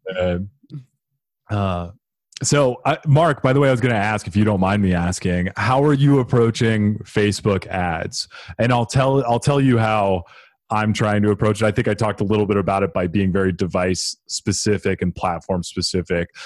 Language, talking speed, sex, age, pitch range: English, 200 wpm, male, 30-49, 90-110 Hz